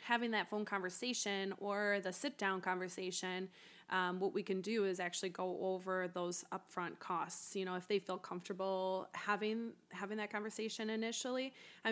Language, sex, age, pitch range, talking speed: English, female, 20-39, 185-210 Hz, 160 wpm